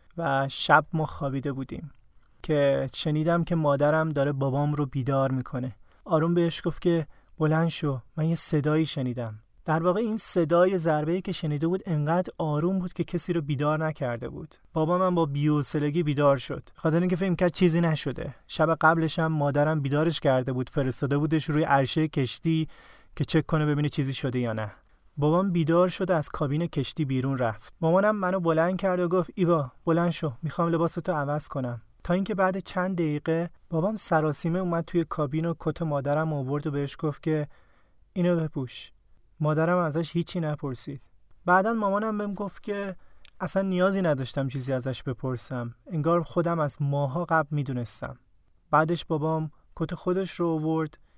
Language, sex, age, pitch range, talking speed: Persian, male, 30-49, 140-170 Hz, 165 wpm